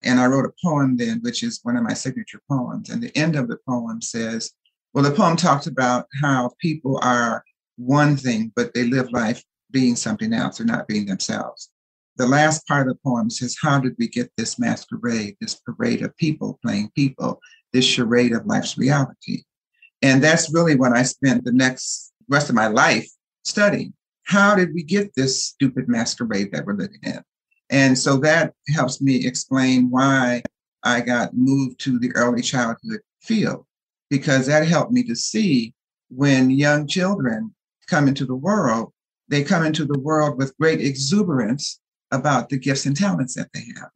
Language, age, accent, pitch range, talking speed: English, 50-69, American, 130-175 Hz, 180 wpm